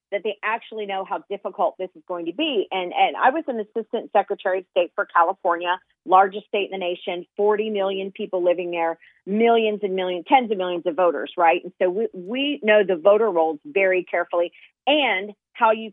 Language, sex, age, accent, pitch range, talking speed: English, female, 40-59, American, 185-235 Hz, 205 wpm